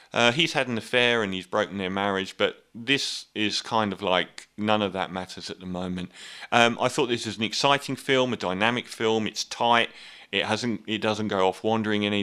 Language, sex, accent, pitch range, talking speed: English, male, British, 100-120 Hz, 215 wpm